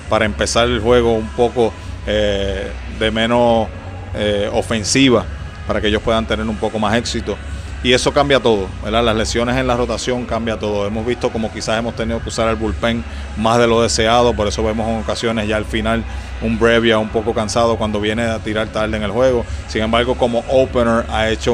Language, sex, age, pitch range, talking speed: English, male, 30-49, 105-115 Hz, 205 wpm